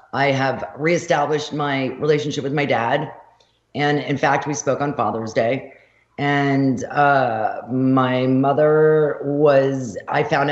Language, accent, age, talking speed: English, American, 40-59, 130 wpm